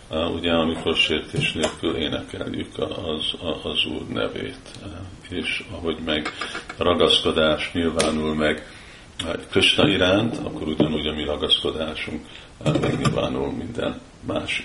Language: Hungarian